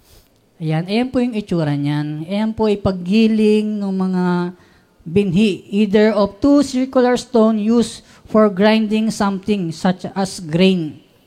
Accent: native